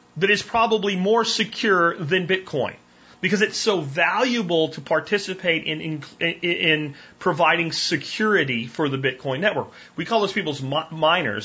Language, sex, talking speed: English, male, 140 wpm